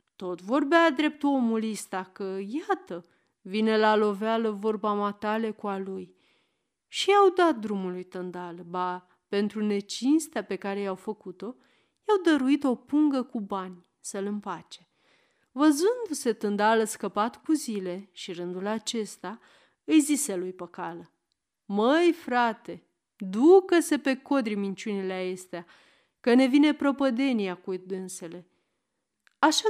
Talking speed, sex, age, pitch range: 125 wpm, female, 40-59, 190-280 Hz